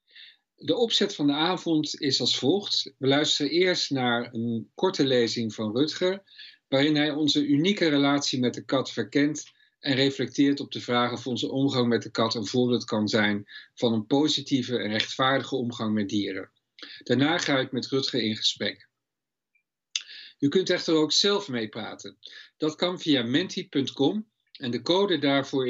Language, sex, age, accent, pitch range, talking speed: Dutch, male, 50-69, Dutch, 120-155 Hz, 165 wpm